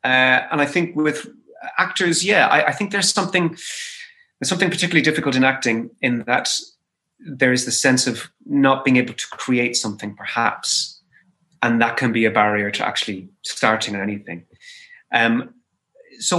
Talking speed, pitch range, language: 160 wpm, 120-175 Hz, English